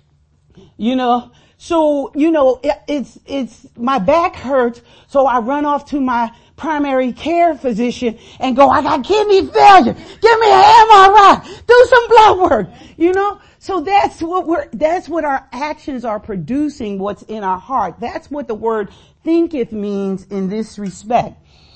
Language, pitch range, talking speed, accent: English, 210-295 Hz, 165 wpm, American